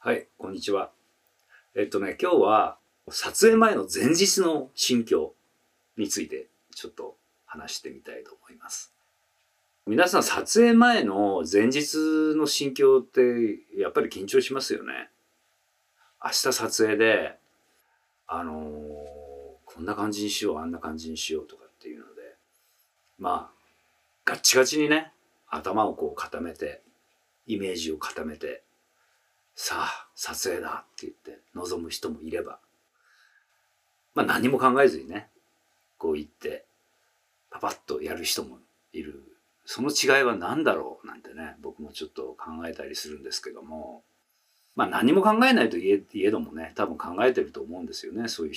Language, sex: Japanese, male